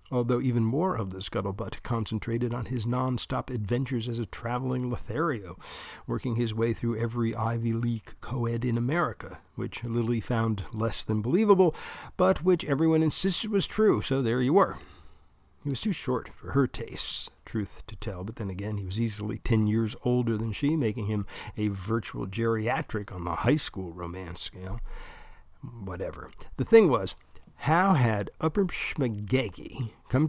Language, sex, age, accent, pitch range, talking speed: English, male, 50-69, American, 100-130 Hz, 160 wpm